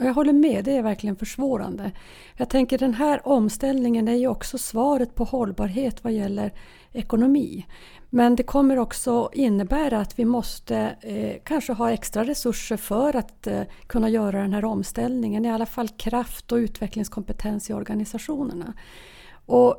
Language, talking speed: Swedish, 155 wpm